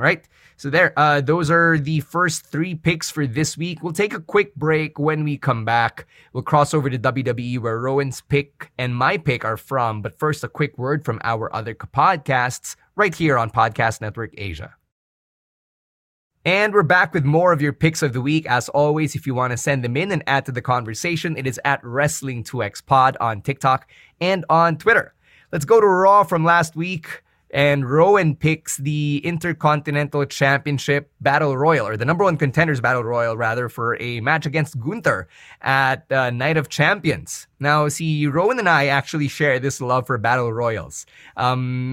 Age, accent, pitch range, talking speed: 20-39, Filipino, 130-155 Hz, 185 wpm